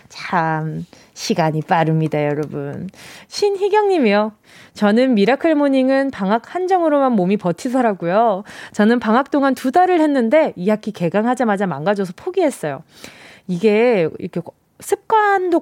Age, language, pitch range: 20-39, Korean, 195-290 Hz